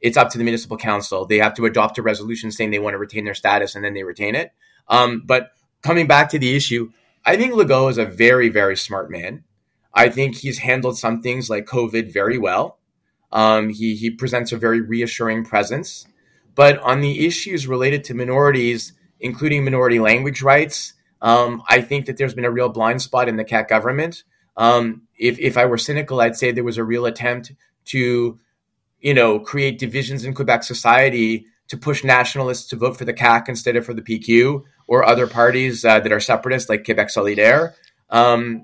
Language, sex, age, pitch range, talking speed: English, male, 30-49, 115-130 Hz, 200 wpm